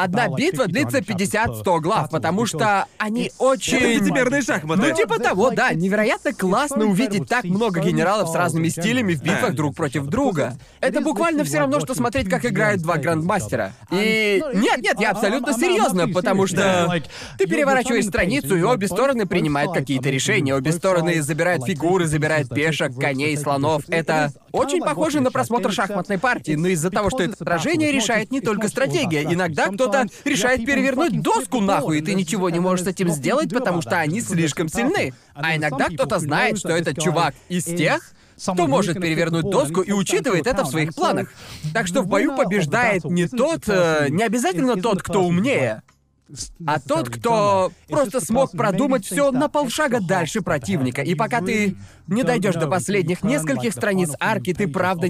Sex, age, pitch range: male, 20-39, 165-235 Hz